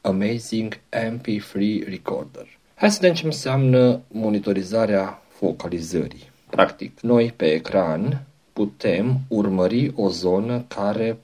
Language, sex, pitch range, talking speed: Romanian, male, 95-125 Hz, 100 wpm